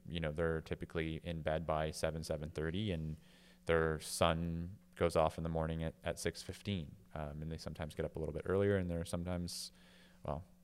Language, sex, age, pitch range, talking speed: English, male, 30-49, 80-100 Hz, 205 wpm